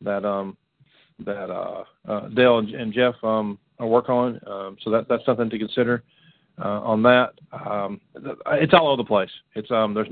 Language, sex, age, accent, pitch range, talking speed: English, male, 40-59, American, 110-130 Hz, 185 wpm